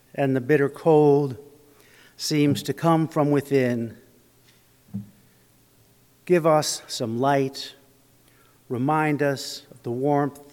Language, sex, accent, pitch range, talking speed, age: English, male, American, 130-145 Hz, 105 wpm, 50-69